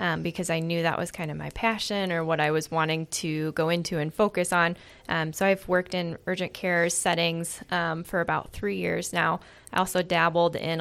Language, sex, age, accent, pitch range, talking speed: English, female, 10-29, American, 160-185 Hz, 215 wpm